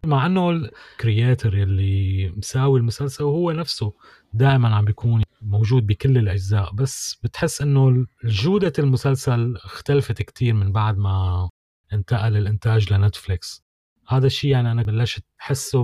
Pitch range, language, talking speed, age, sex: 105-135 Hz, Arabic, 125 wpm, 30-49, male